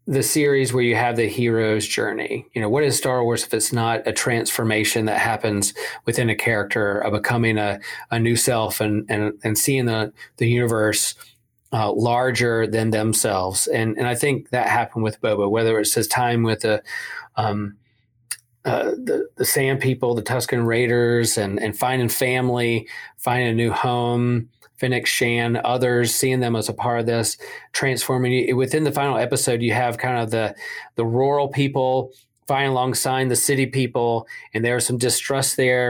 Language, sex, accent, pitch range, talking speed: English, male, American, 115-130 Hz, 175 wpm